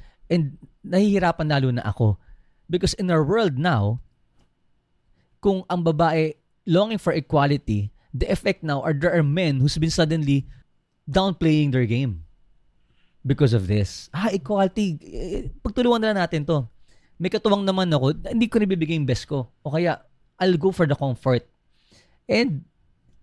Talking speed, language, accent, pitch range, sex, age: 145 wpm, Filipino, native, 120-170 Hz, male, 20-39